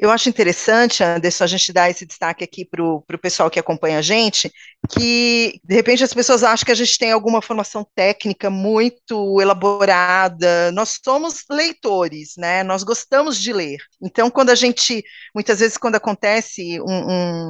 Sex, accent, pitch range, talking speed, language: female, Brazilian, 190-285 Hz, 170 wpm, Portuguese